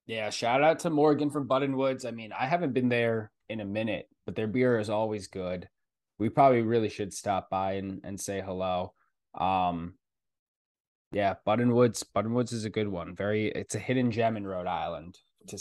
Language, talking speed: English, 200 wpm